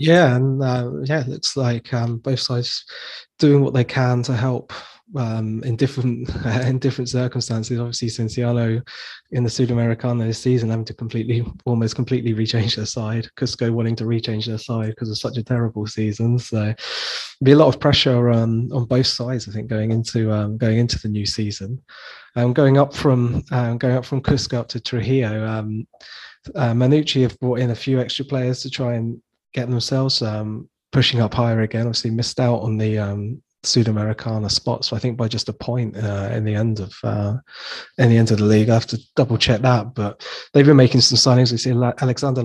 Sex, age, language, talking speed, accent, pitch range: male, 20-39, English, 205 wpm, British, 110-125 Hz